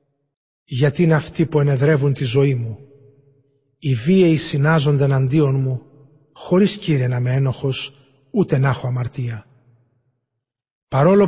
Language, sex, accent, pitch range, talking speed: Greek, male, native, 130-155 Hz, 120 wpm